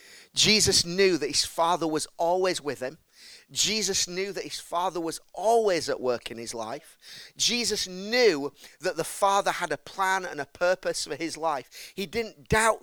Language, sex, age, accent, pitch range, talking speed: English, male, 40-59, British, 140-195 Hz, 180 wpm